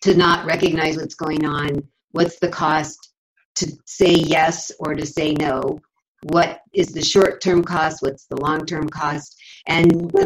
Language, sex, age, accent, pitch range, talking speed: English, female, 50-69, American, 150-190 Hz, 160 wpm